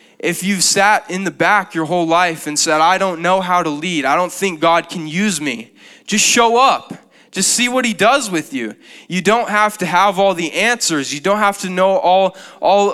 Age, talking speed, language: 20-39, 225 wpm, English